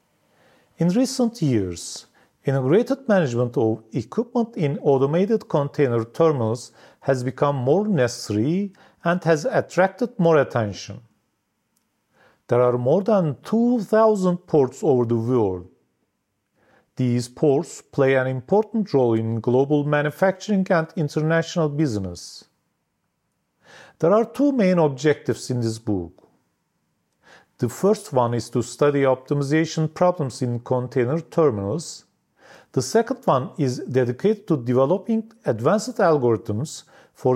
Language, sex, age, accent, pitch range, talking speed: English, male, 40-59, Turkish, 125-185 Hz, 110 wpm